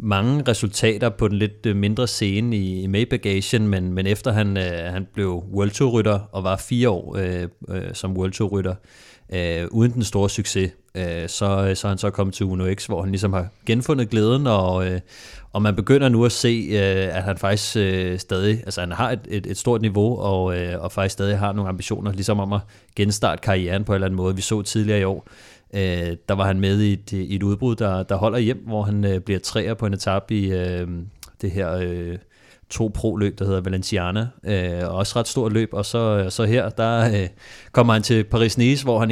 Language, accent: Danish, native